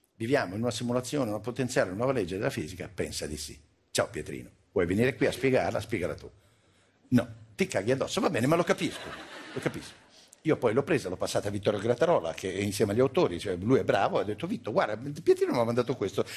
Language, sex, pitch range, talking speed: Italian, male, 90-125 Hz, 225 wpm